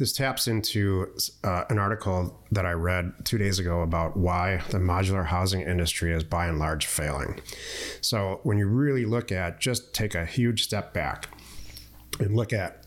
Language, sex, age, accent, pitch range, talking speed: English, male, 30-49, American, 85-105 Hz, 175 wpm